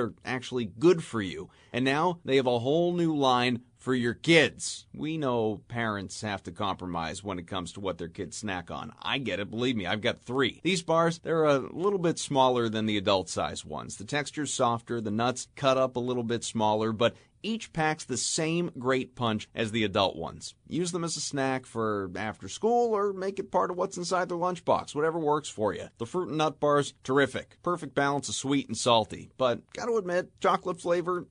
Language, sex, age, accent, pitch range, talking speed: English, male, 30-49, American, 110-155 Hz, 215 wpm